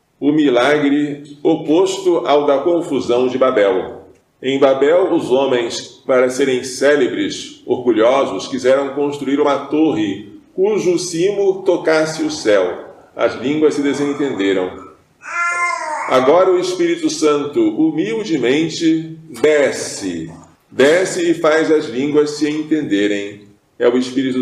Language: Portuguese